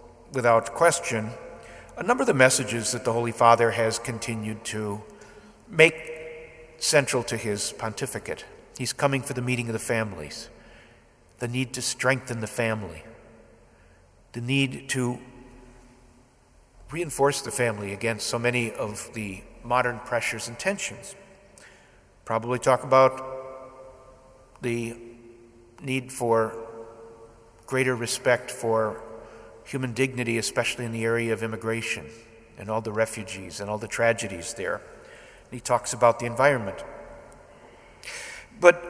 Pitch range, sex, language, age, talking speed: 115-130 Hz, male, English, 50-69, 125 wpm